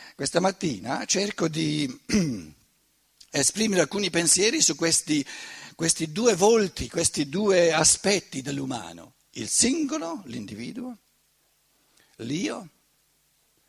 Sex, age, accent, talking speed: male, 60-79, native, 90 wpm